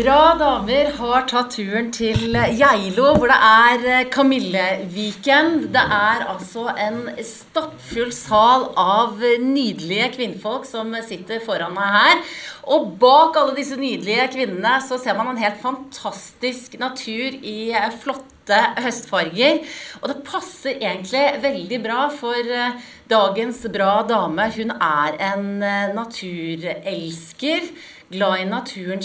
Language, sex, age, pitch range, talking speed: English, female, 30-49, 195-255 Hz, 125 wpm